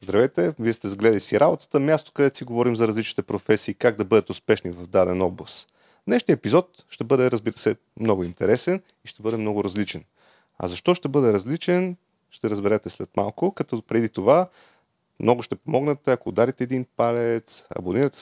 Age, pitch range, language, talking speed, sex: 30-49, 110-145 Hz, Bulgarian, 175 wpm, male